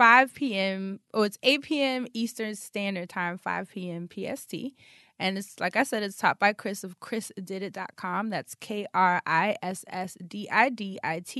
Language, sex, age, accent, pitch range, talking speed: English, female, 20-39, American, 185-230 Hz, 140 wpm